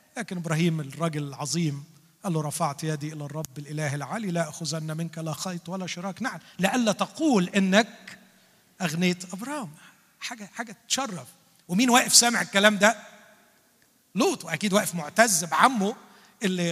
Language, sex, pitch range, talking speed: Arabic, male, 155-215 Hz, 135 wpm